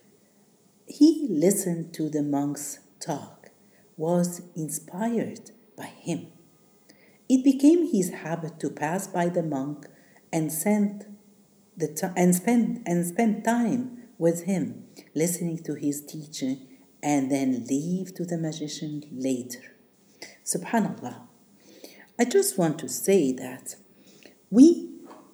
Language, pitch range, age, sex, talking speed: Arabic, 155-220 Hz, 50-69, female, 105 wpm